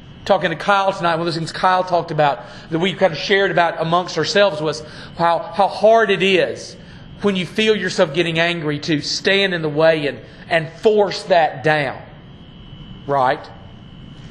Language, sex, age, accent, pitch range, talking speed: English, male, 40-59, American, 160-195 Hz, 175 wpm